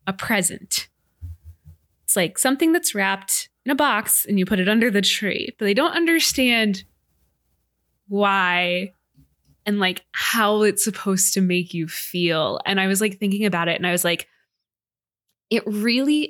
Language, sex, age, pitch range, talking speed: English, female, 20-39, 175-210 Hz, 160 wpm